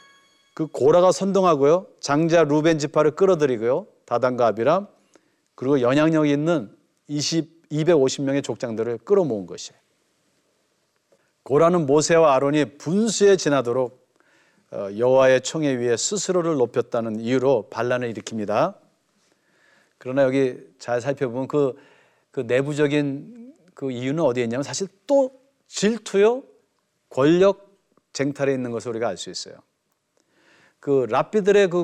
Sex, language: male, Korean